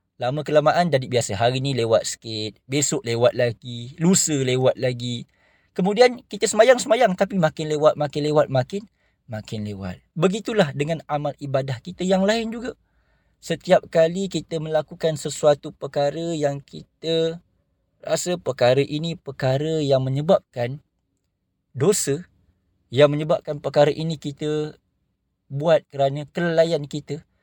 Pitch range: 125-165 Hz